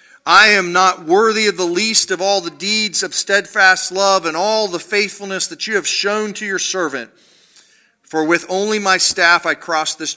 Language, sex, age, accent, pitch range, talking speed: English, male, 40-59, American, 150-205 Hz, 195 wpm